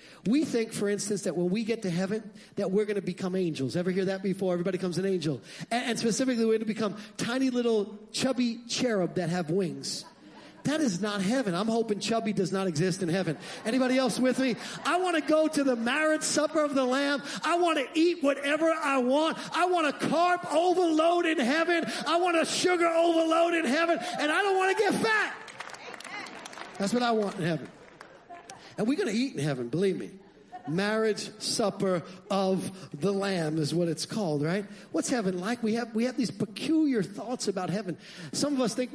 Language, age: English, 40-59